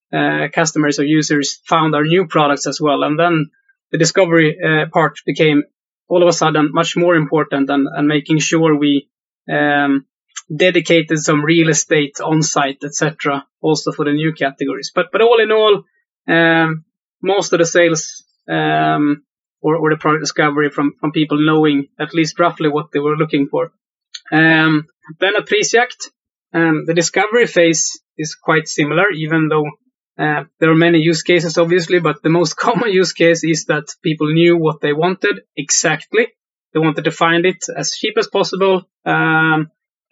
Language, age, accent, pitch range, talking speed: English, 20-39, Swedish, 150-170 Hz, 170 wpm